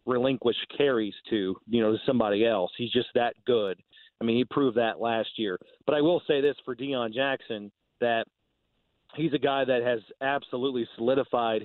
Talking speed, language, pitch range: 175 wpm, English, 115-135 Hz